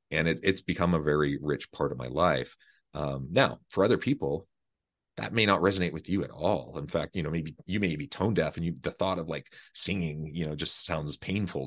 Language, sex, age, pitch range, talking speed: English, male, 30-49, 75-90 Hz, 230 wpm